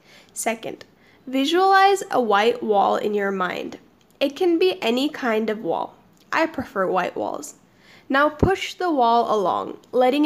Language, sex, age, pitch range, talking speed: English, female, 10-29, 225-310 Hz, 145 wpm